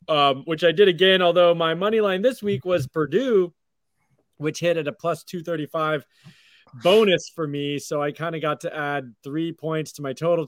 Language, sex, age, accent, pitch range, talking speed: English, male, 20-39, American, 145-185 Hz, 195 wpm